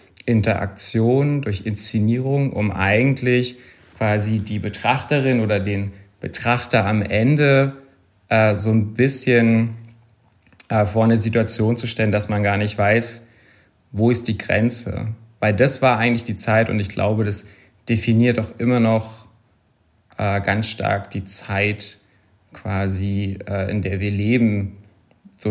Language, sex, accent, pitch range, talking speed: German, male, German, 100-120 Hz, 135 wpm